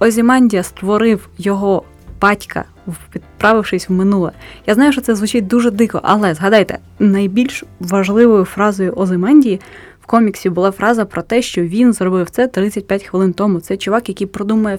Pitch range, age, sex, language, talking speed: 190-230 Hz, 20-39, female, Ukrainian, 150 wpm